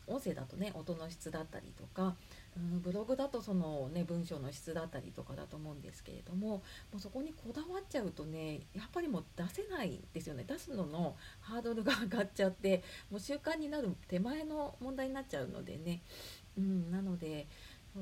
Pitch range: 170-255 Hz